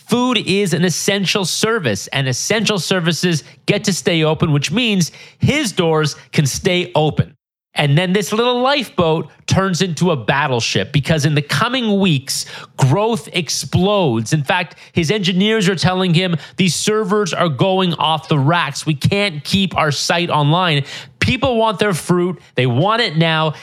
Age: 30-49